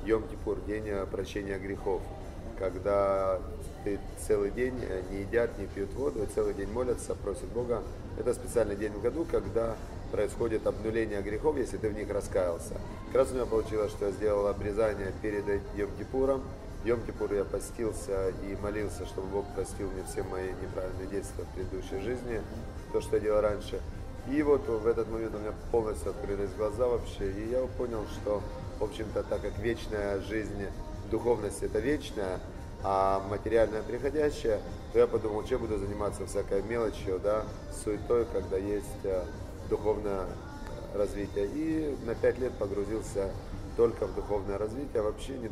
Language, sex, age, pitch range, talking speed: Russian, male, 30-49, 95-110 Hz, 155 wpm